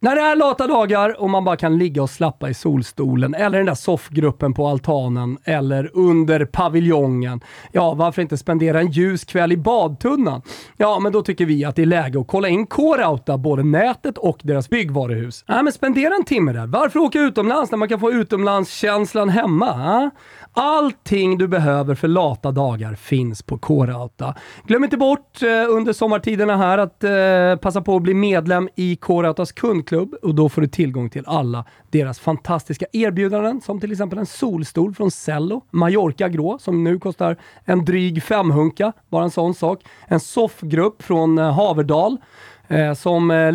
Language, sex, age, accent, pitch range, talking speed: Swedish, male, 30-49, native, 150-205 Hz, 175 wpm